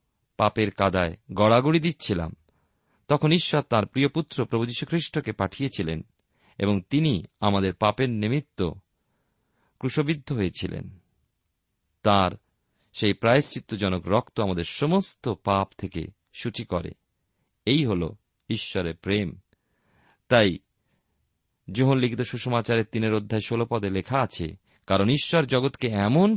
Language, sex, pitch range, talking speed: Bengali, male, 95-150 Hz, 100 wpm